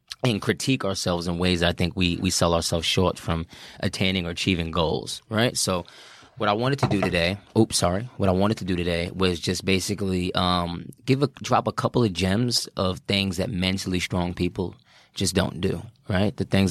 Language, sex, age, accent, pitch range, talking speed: English, male, 20-39, American, 90-100 Hz, 195 wpm